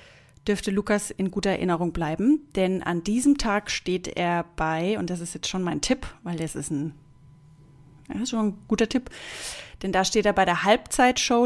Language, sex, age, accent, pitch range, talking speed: German, female, 30-49, German, 160-220 Hz, 195 wpm